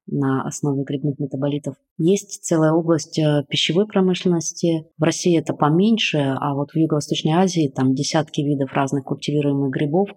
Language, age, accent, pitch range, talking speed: Russian, 20-39, native, 140-165 Hz, 140 wpm